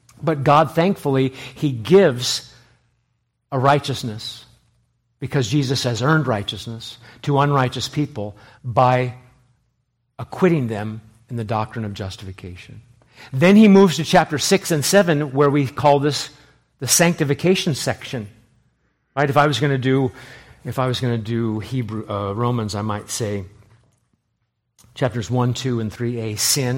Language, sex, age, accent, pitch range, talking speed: English, male, 50-69, American, 120-150 Hz, 145 wpm